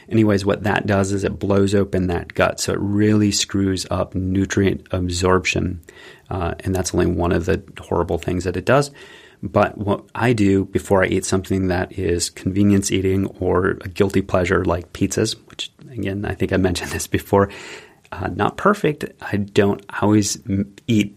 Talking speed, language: 175 wpm, English